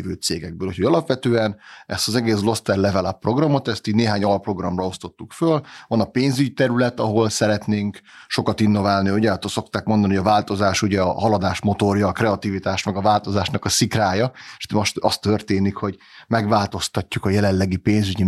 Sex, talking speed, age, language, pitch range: male, 165 wpm, 30-49, Hungarian, 95-115 Hz